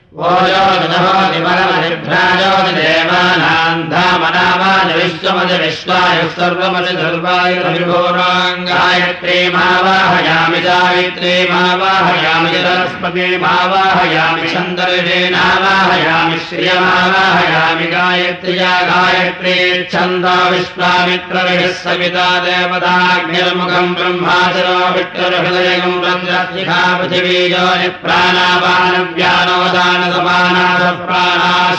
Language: Russian